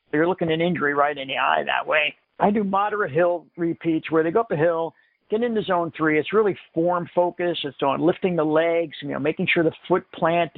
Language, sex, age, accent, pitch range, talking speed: English, male, 50-69, American, 150-175 Hz, 225 wpm